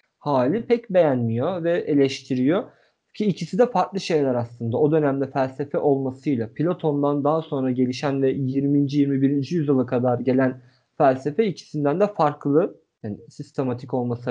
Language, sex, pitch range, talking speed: Turkish, male, 130-190 Hz, 135 wpm